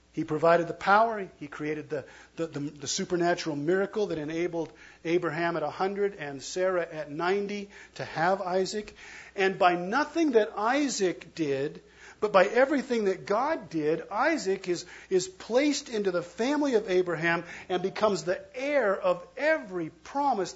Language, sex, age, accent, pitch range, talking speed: English, male, 50-69, American, 160-220 Hz, 145 wpm